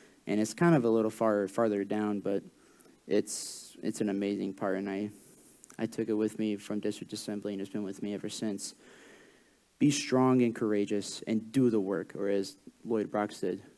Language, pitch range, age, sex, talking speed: English, 105-120 Hz, 30-49, male, 195 wpm